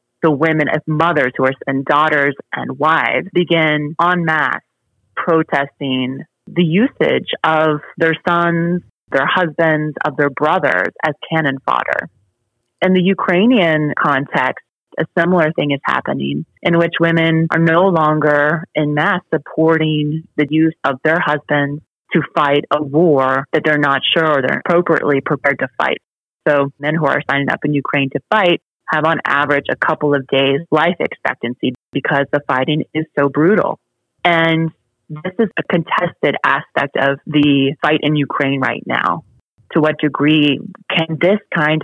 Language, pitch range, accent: English, 140-170 Hz, American